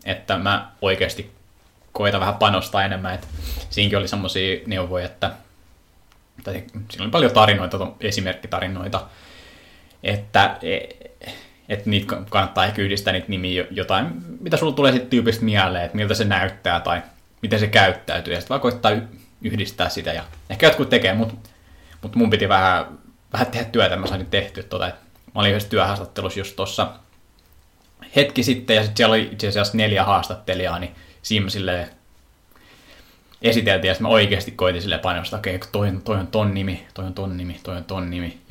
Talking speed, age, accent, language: 165 wpm, 20-39, native, Finnish